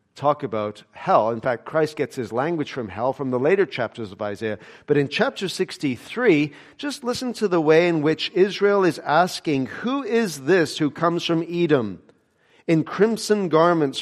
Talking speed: 175 wpm